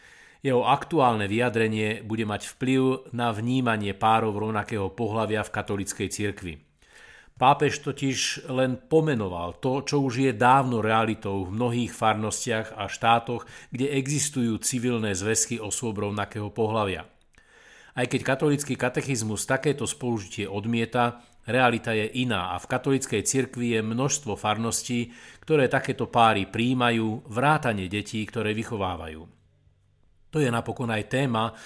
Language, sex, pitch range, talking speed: Slovak, male, 105-125 Hz, 125 wpm